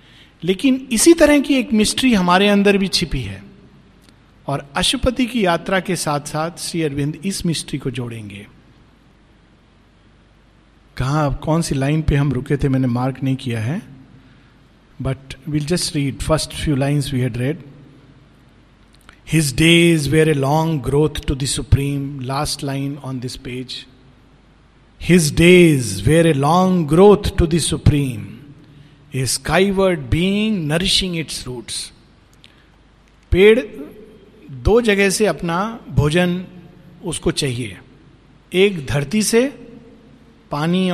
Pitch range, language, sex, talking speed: 135-195 Hz, Hindi, male, 130 wpm